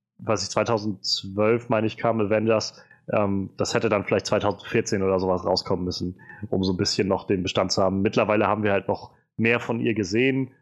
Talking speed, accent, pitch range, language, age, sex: 200 wpm, German, 105-130 Hz, German, 30-49, male